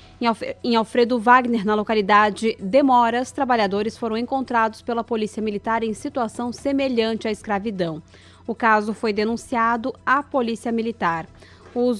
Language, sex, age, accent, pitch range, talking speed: Portuguese, female, 20-39, Brazilian, 215-255 Hz, 125 wpm